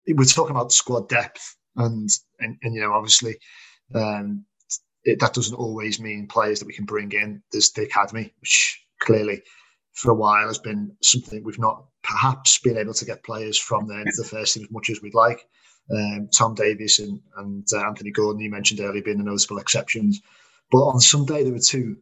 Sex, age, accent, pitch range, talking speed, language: male, 30-49, British, 105-125 Hz, 200 wpm, English